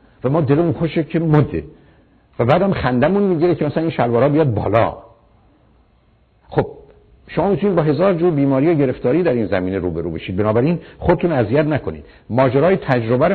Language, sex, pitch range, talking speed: Persian, male, 100-155 Hz, 175 wpm